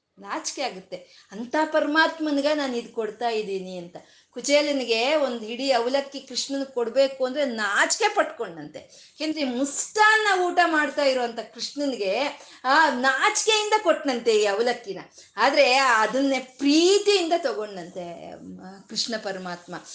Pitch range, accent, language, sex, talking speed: 215-300 Hz, native, Kannada, female, 100 wpm